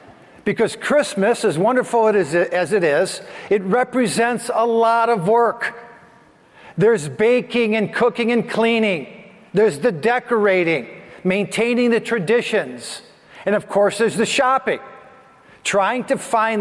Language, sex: English, male